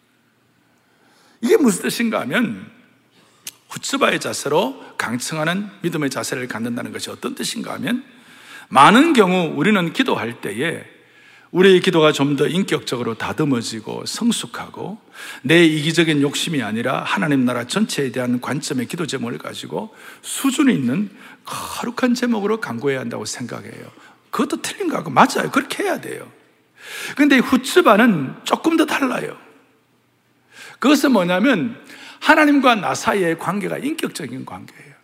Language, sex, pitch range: Korean, male, 170-260 Hz